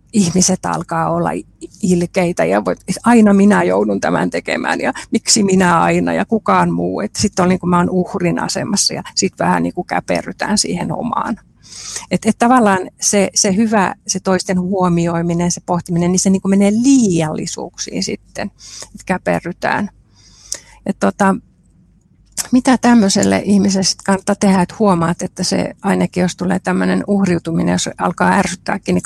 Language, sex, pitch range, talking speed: Finnish, female, 170-205 Hz, 145 wpm